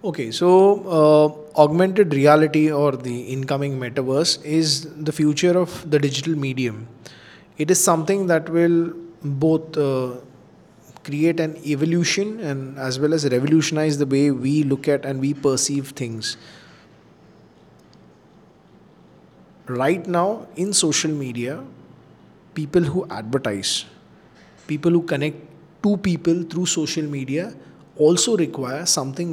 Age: 20-39